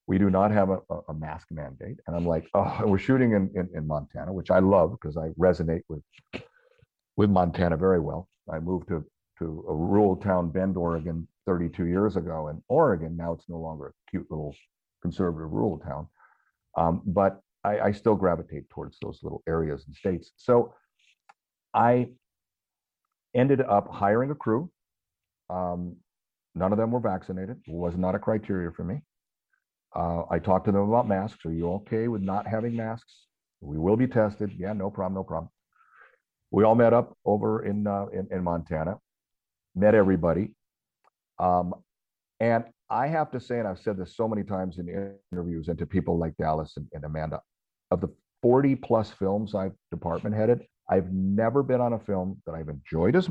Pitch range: 85-110 Hz